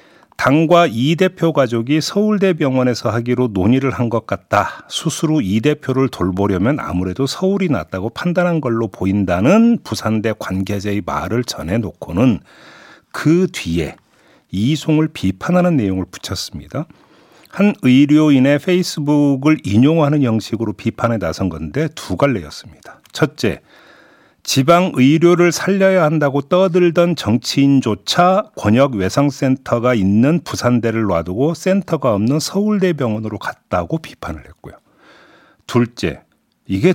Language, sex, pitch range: Korean, male, 105-170 Hz